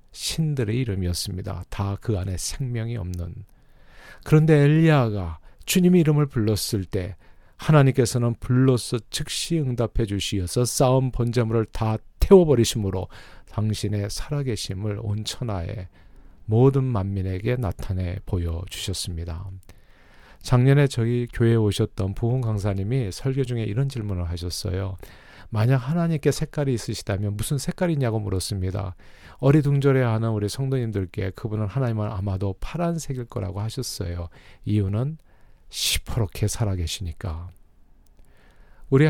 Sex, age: male, 40-59